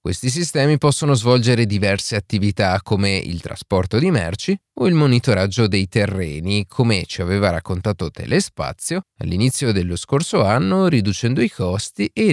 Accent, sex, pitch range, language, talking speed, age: native, male, 100-140 Hz, Italian, 145 wpm, 30-49